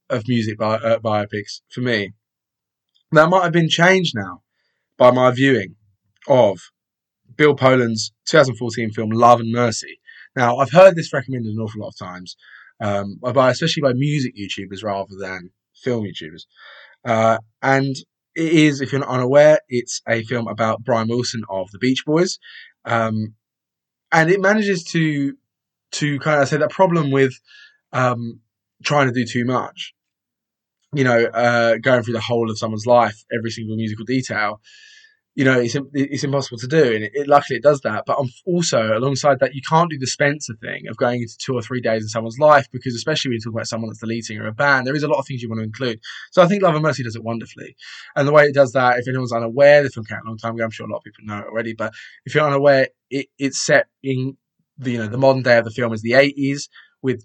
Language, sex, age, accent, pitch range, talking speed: English, male, 20-39, British, 115-145 Hz, 215 wpm